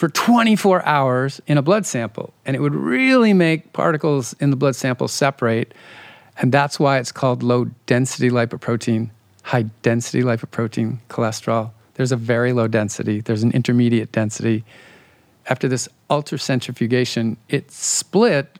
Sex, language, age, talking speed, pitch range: male, English, 50-69, 145 wpm, 120-150 Hz